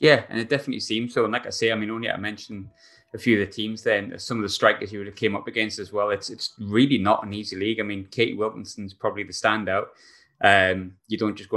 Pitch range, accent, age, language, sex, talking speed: 95-110 Hz, British, 20-39, English, male, 270 wpm